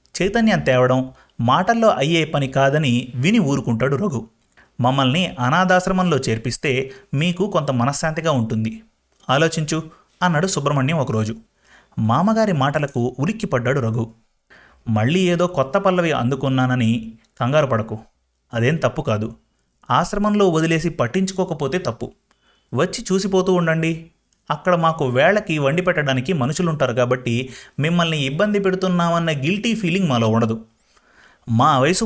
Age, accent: 30-49, native